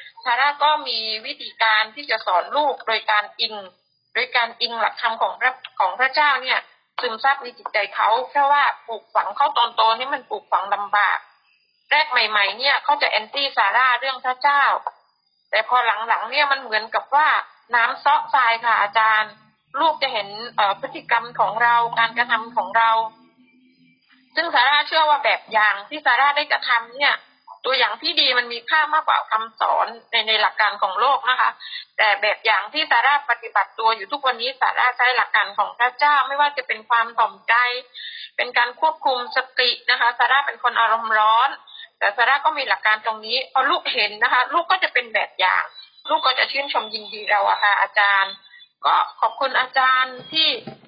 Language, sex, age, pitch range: Thai, female, 30-49, 220-285 Hz